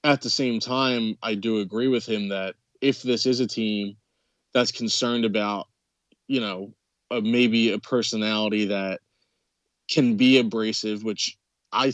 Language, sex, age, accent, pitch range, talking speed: English, male, 20-39, American, 110-125 Hz, 145 wpm